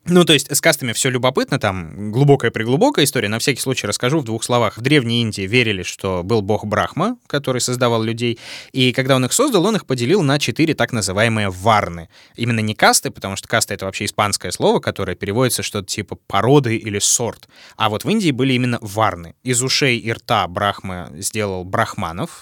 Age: 20-39